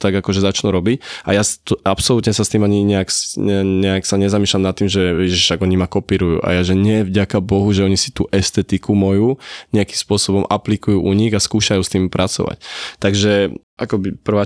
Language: Slovak